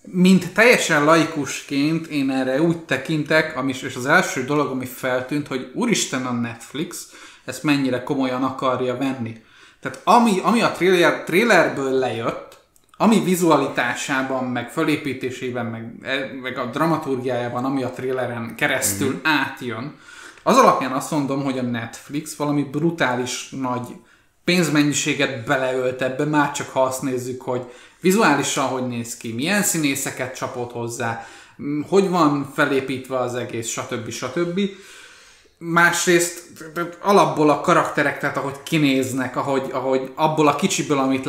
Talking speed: 125 wpm